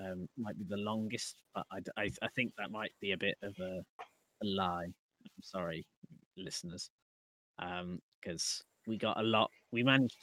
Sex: male